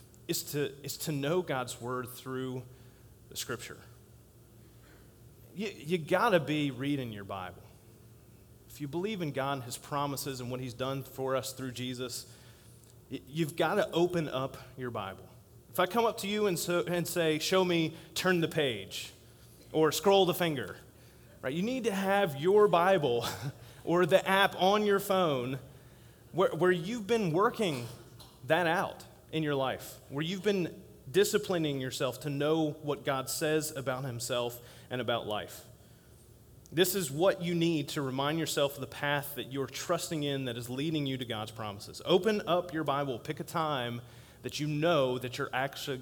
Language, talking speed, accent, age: English, 175 wpm, American, 30-49